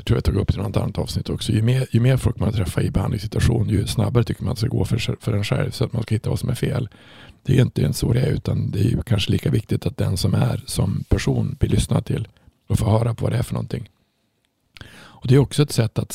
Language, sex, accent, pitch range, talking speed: Swedish, male, Norwegian, 110-130 Hz, 295 wpm